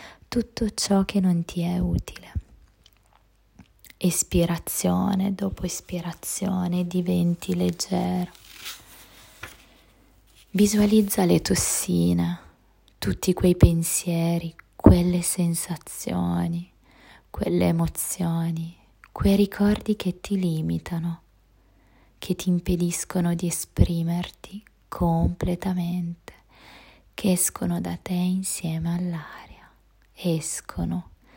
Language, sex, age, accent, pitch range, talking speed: Italian, female, 20-39, native, 160-180 Hz, 75 wpm